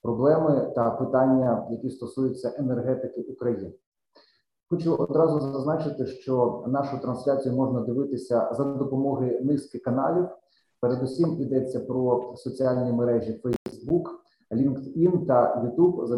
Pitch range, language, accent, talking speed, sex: 125-145 Hz, Ukrainian, native, 105 wpm, male